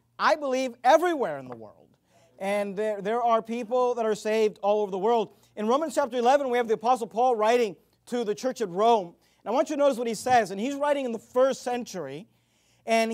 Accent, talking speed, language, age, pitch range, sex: American, 230 wpm, English, 40-59, 215-265 Hz, male